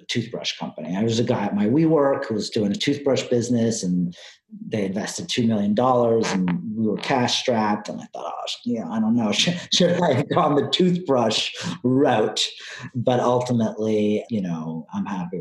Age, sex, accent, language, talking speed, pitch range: 40-59, male, American, English, 180 wpm, 110-155 Hz